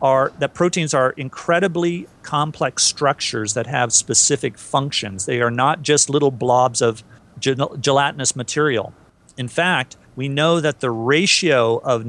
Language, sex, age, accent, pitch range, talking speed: English, male, 40-59, American, 125-165 Hz, 145 wpm